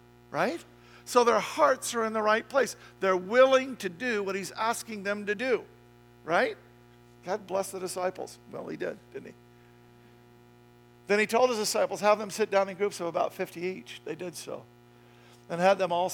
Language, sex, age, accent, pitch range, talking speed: English, male, 50-69, American, 120-180 Hz, 190 wpm